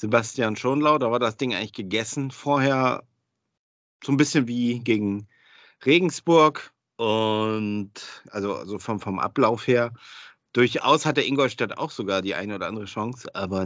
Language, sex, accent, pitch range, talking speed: German, male, German, 100-125 Hz, 145 wpm